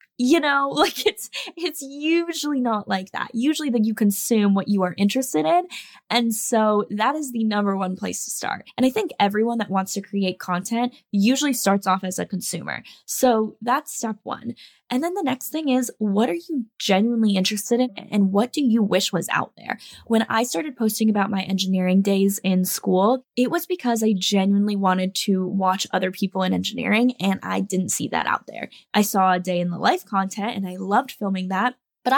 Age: 10-29